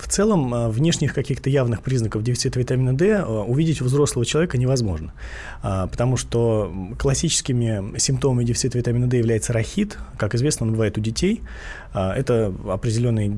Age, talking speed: 20-39, 140 wpm